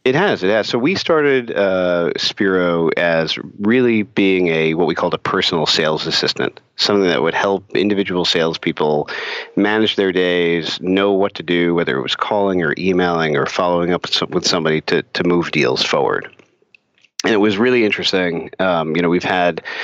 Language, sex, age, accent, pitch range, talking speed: English, male, 40-59, American, 85-100 Hz, 180 wpm